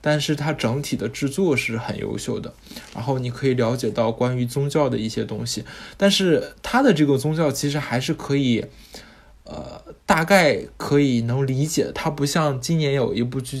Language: Chinese